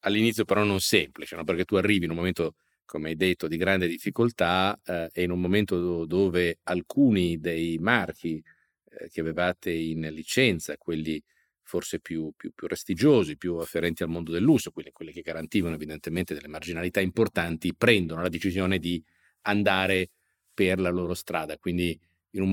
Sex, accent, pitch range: male, native, 90-110 Hz